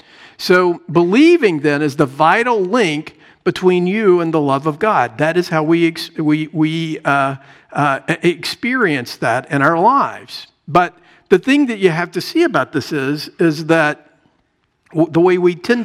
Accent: American